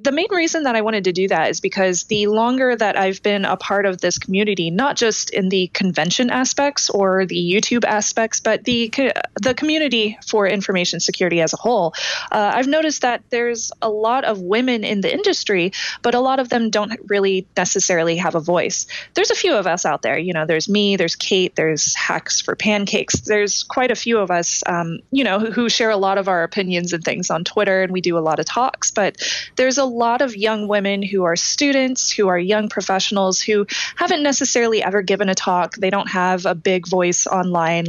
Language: English